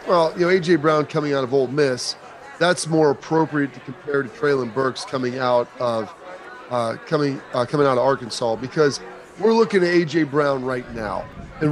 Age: 30-49